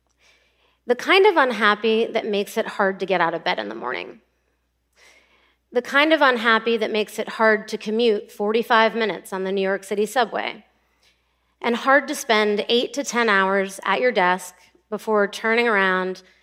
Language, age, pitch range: English, 30-49, 190-260 Hz